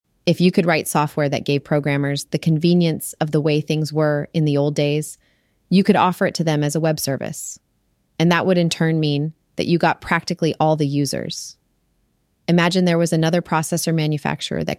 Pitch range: 150-175 Hz